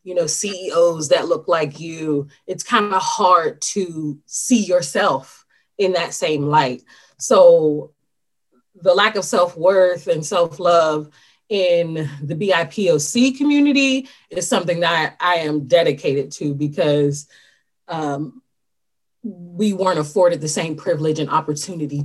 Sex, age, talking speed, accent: female, 30-49, 125 wpm, American